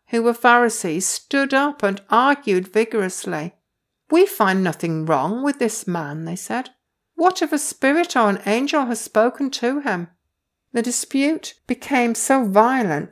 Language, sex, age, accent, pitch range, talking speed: English, female, 60-79, British, 180-245 Hz, 150 wpm